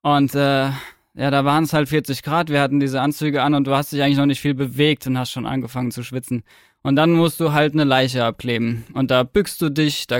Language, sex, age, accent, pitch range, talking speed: German, male, 20-39, German, 140-155 Hz, 255 wpm